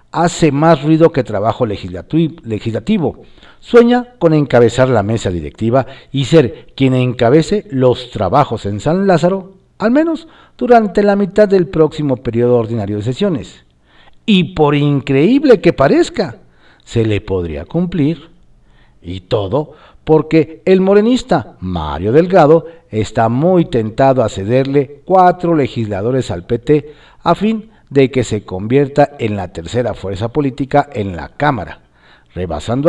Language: Spanish